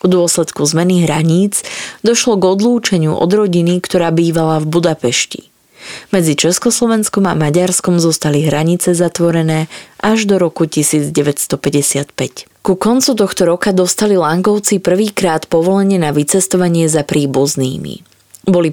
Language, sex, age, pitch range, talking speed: Slovak, female, 20-39, 160-195 Hz, 120 wpm